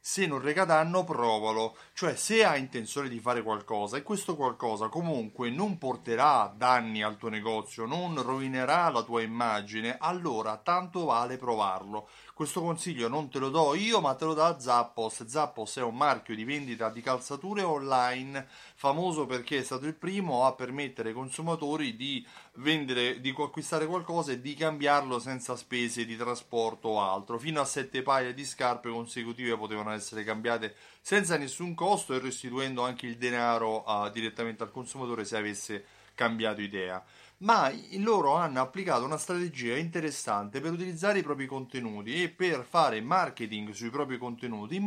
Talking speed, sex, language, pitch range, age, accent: 165 wpm, male, Italian, 115-165 Hz, 30-49, native